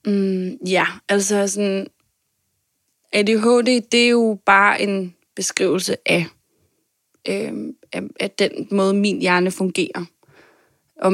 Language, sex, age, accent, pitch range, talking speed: Danish, female, 20-39, native, 190-220 Hz, 110 wpm